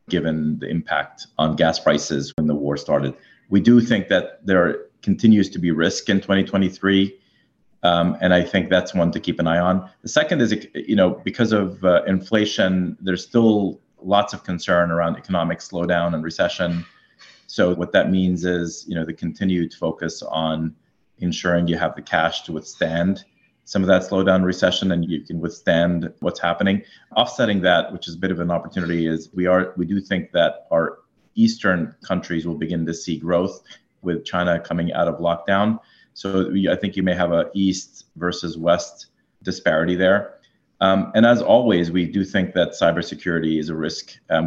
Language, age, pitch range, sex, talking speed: English, 30-49, 85-95 Hz, male, 185 wpm